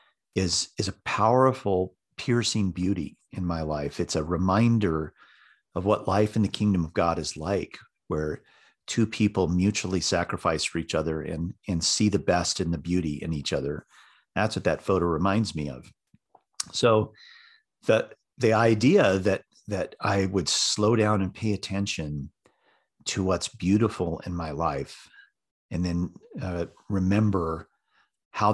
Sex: male